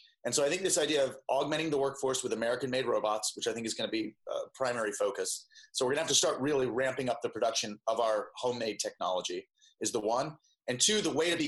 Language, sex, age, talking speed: English, male, 30-49, 255 wpm